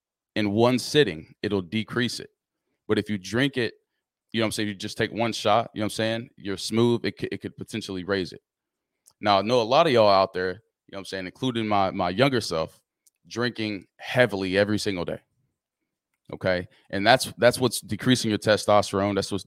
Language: English